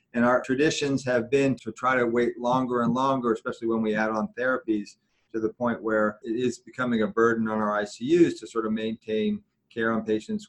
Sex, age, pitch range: male, 40-59, 110-130 Hz